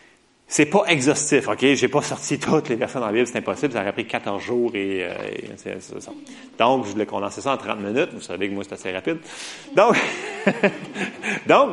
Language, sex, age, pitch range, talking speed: French, male, 30-49, 110-160 Hz, 210 wpm